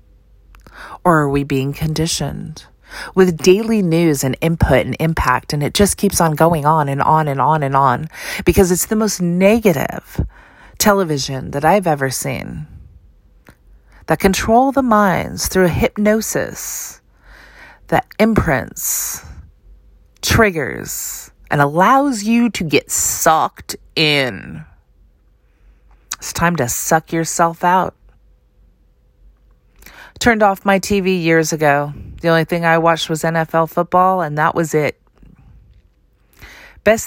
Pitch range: 140-185 Hz